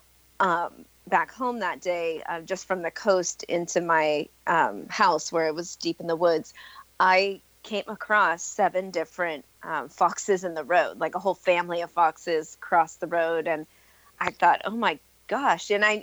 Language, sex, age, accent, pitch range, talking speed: English, female, 30-49, American, 165-205 Hz, 180 wpm